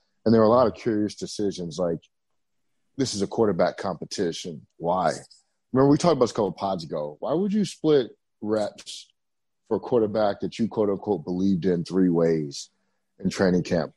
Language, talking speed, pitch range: English, 190 wpm, 95-115 Hz